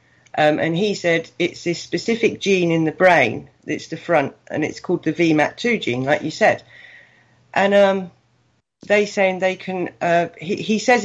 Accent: British